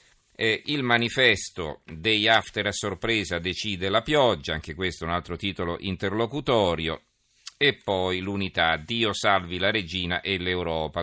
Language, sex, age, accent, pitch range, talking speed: Italian, male, 40-59, native, 85-105 Hz, 140 wpm